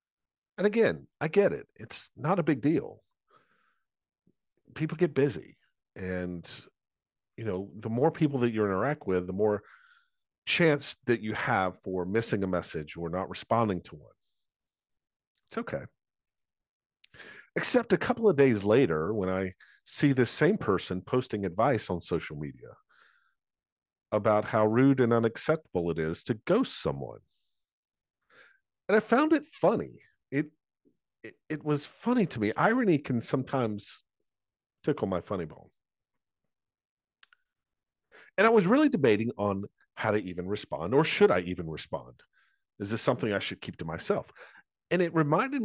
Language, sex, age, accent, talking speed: English, male, 50-69, American, 145 wpm